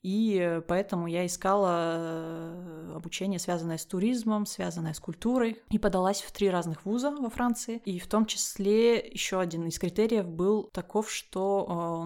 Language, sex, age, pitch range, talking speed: Russian, female, 20-39, 165-195 Hz, 155 wpm